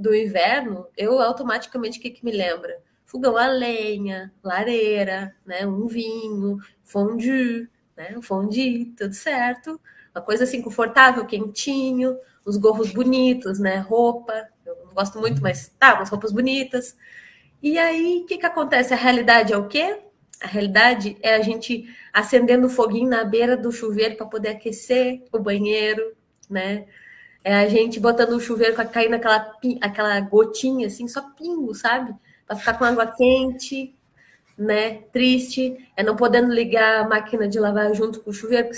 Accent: Brazilian